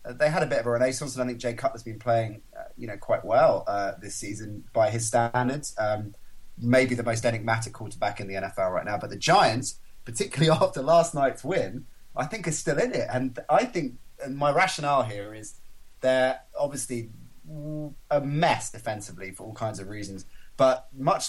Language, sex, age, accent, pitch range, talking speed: English, male, 30-49, British, 115-145 Hz, 195 wpm